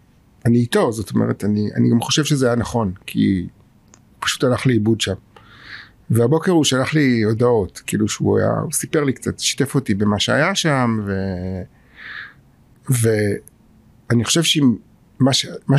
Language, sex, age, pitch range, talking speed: Hebrew, male, 60-79, 110-135 Hz, 140 wpm